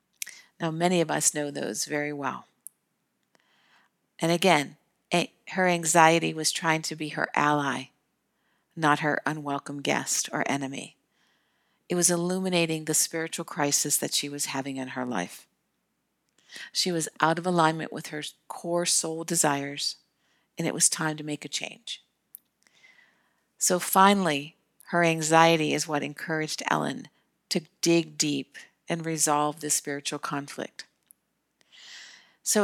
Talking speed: 130 wpm